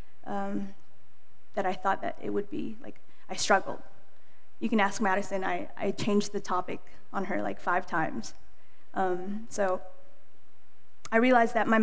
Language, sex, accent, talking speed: English, female, American, 155 wpm